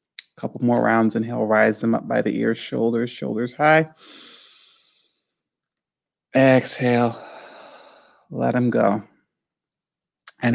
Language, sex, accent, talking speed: English, male, American, 100 wpm